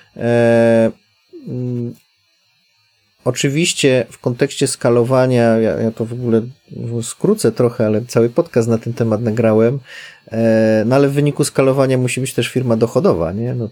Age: 30-49